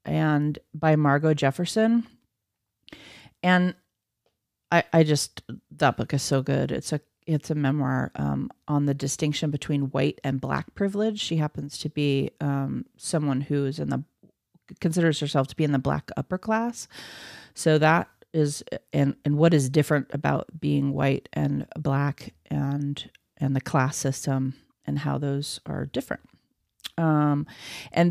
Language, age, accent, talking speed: English, 30-49, American, 150 wpm